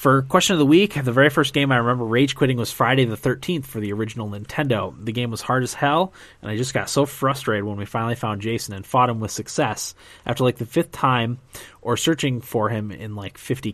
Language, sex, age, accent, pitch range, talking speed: English, male, 20-39, American, 110-135 Hz, 240 wpm